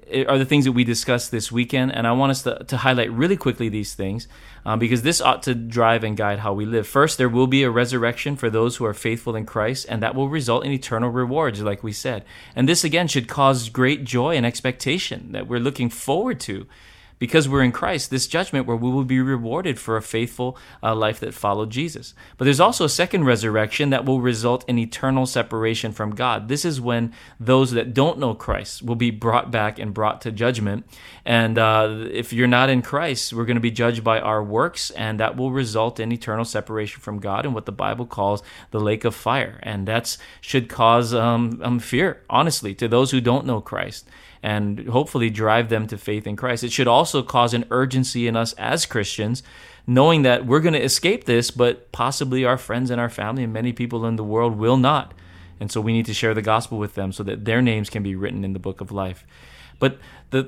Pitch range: 110-130 Hz